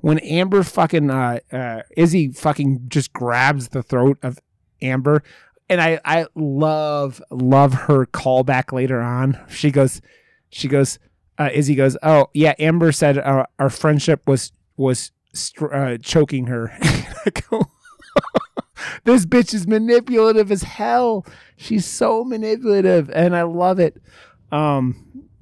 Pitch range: 125-160 Hz